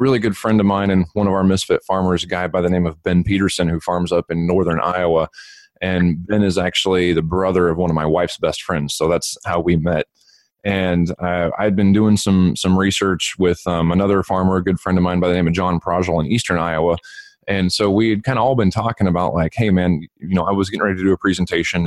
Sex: male